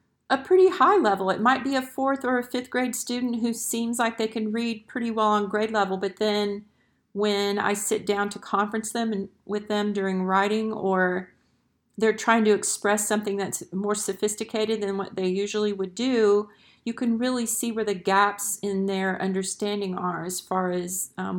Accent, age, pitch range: American, 40-59, 185-215 Hz